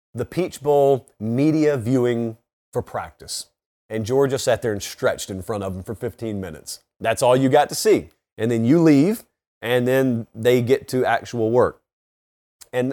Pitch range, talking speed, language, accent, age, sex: 125-160 Hz, 175 wpm, English, American, 30-49, male